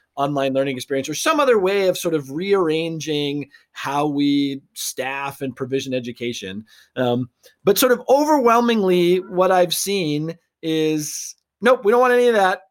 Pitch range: 165-225 Hz